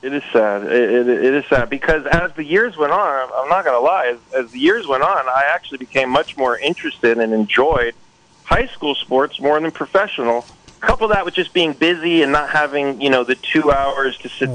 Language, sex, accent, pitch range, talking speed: English, male, American, 130-165 Hz, 225 wpm